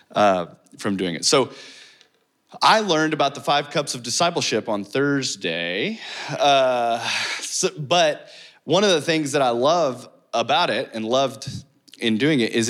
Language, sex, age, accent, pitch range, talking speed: English, male, 20-39, American, 105-135 Hz, 155 wpm